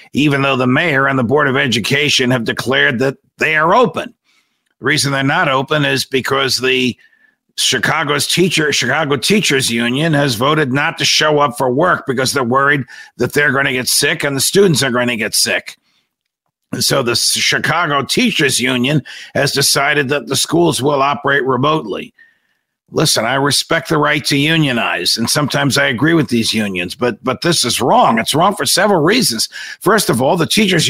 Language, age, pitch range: English, 50-69, 130-165 Hz